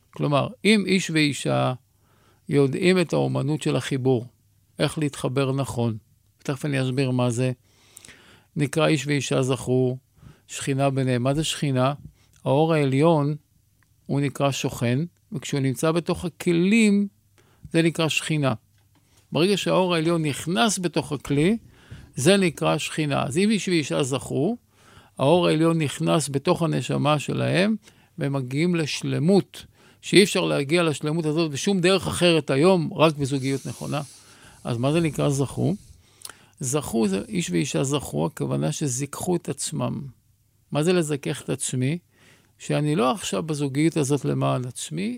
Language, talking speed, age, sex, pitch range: Hebrew, 130 wpm, 50-69, male, 125-165 Hz